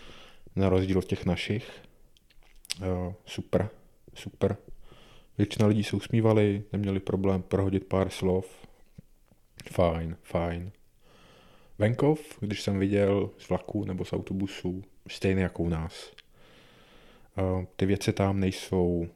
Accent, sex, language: native, male, Czech